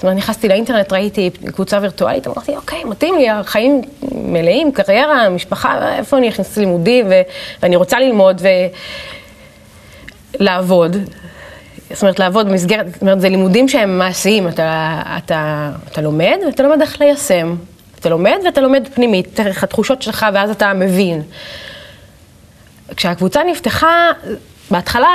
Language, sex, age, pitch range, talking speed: Hebrew, female, 30-49, 180-265 Hz, 135 wpm